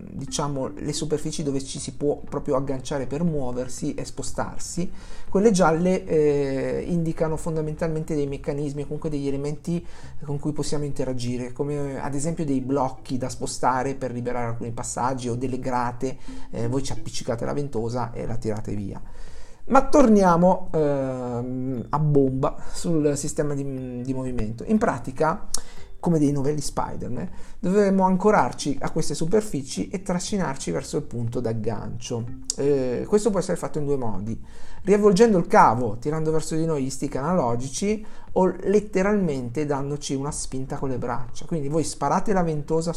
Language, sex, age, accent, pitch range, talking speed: Italian, male, 50-69, native, 130-165 Hz, 155 wpm